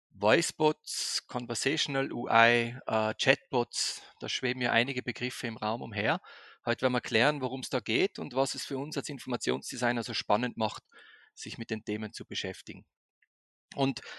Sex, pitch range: male, 125-155 Hz